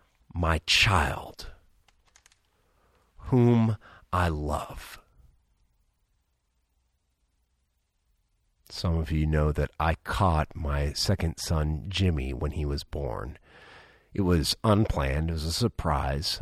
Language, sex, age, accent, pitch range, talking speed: English, male, 50-69, American, 70-100 Hz, 100 wpm